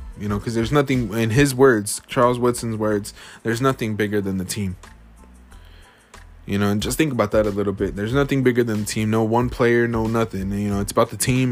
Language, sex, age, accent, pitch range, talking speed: English, male, 20-39, American, 110-140 Hz, 230 wpm